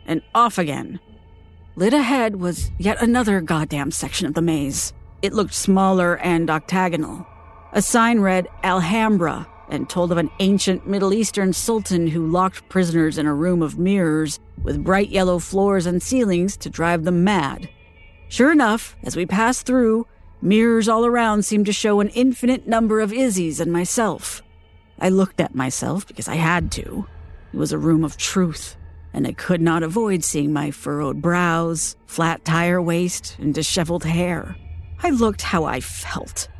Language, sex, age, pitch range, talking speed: English, female, 40-59, 155-205 Hz, 165 wpm